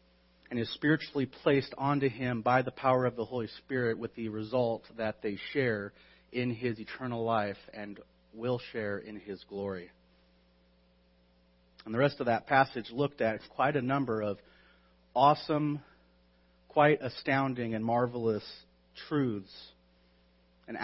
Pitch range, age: 95-135 Hz, 40-59